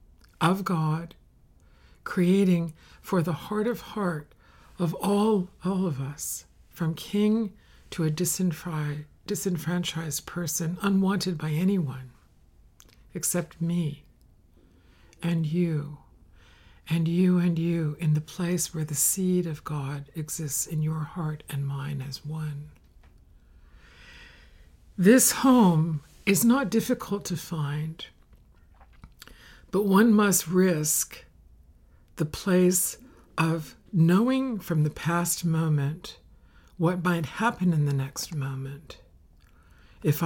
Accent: American